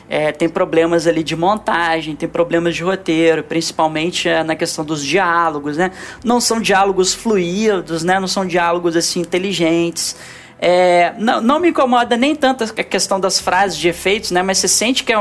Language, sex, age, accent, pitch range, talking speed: Portuguese, male, 20-39, Brazilian, 170-215 Hz, 180 wpm